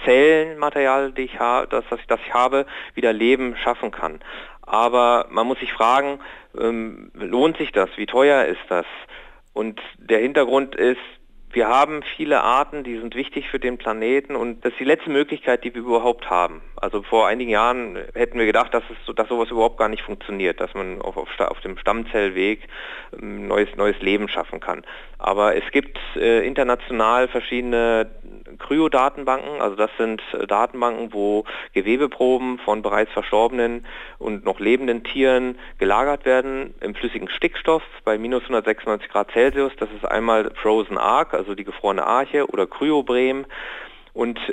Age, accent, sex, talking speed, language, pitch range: 40-59, German, male, 165 wpm, German, 115-140 Hz